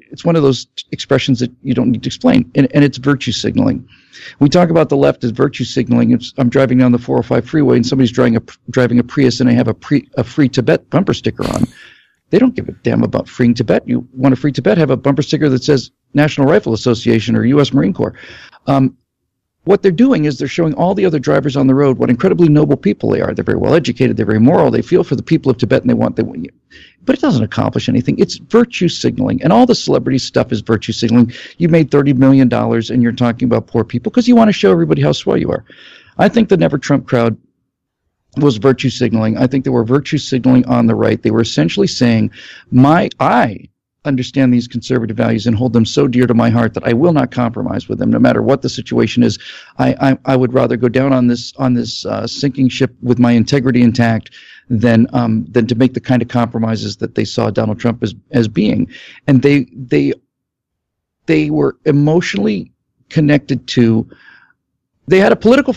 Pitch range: 120-145 Hz